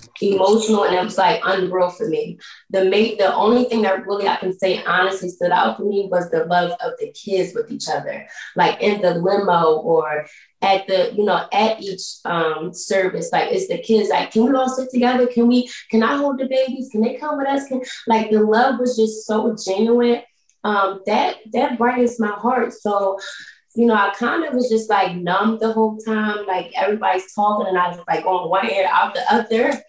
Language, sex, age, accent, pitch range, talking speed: English, female, 20-39, American, 175-225 Hz, 215 wpm